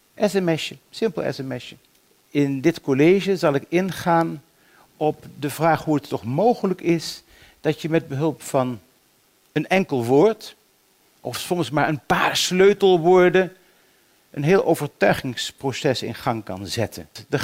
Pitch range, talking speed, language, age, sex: 135-185 Hz, 135 wpm, Dutch, 50-69, male